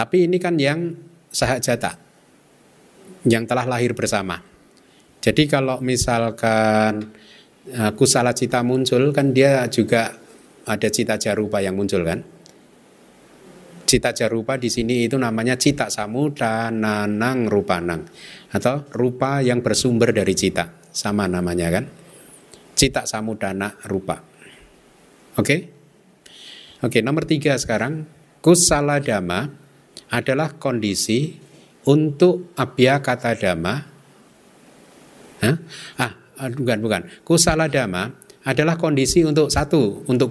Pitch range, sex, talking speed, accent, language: 110-145 Hz, male, 105 wpm, native, Indonesian